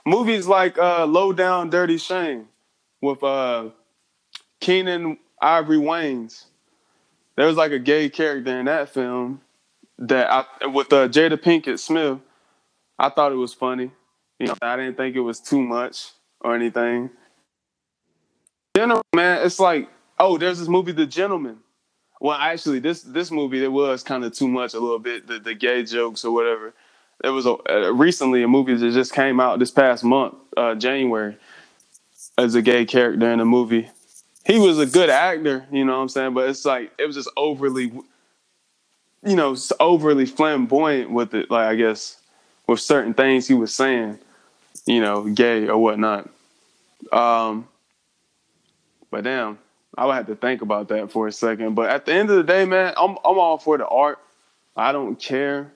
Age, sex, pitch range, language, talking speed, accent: 20-39, male, 120-155 Hz, English, 180 wpm, American